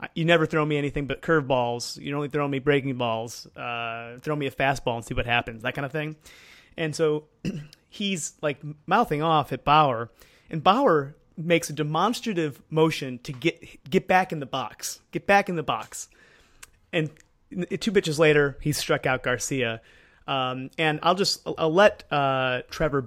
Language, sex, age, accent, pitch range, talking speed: English, male, 30-49, American, 130-170 Hz, 180 wpm